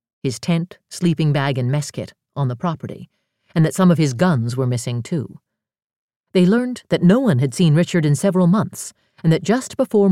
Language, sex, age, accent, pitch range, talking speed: English, female, 50-69, American, 135-185 Hz, 200 wpm